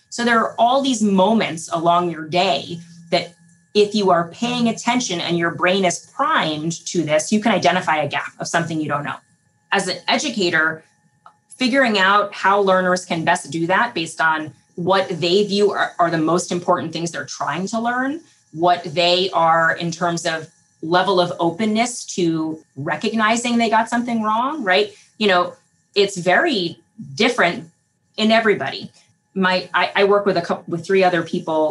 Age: 20-39